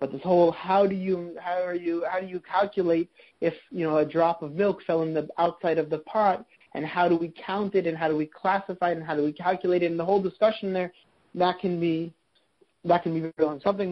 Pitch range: 155-195 Hz